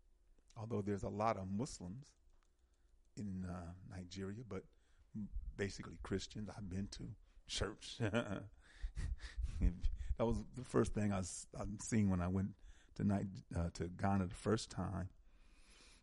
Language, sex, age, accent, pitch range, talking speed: English, male, 50-69, American, 85-115 Hz, 140 wpm